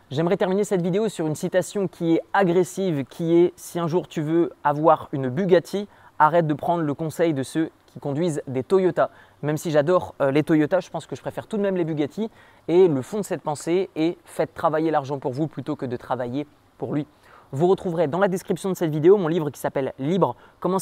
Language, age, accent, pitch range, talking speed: French, 20-39, French, 150-185 Hz, 235 wpm